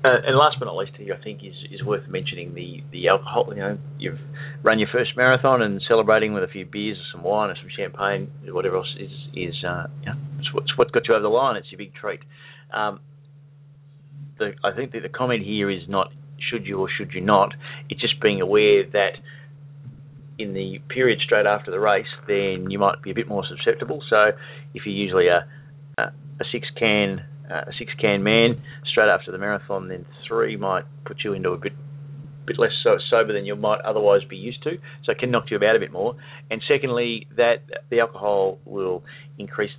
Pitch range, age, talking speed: 110-145 Hz, 30-49, 215 wpm